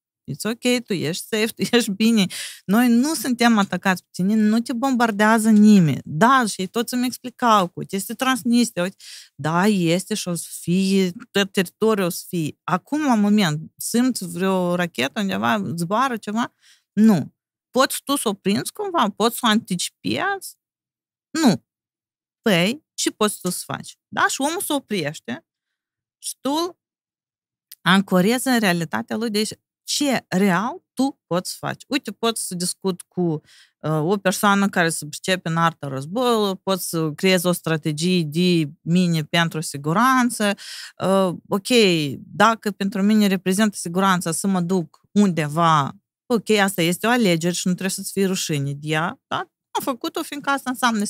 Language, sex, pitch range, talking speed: Romanian, female, 175-230 Hz, 160 wpm